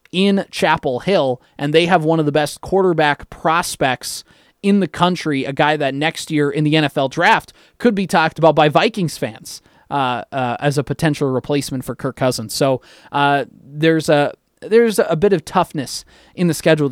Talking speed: 185 wpm